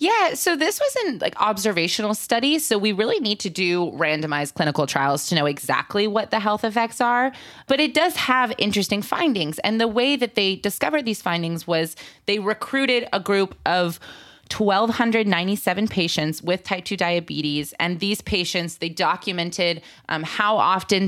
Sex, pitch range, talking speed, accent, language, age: female, 165-215 Hz, 170 wpm, American, English, 20-39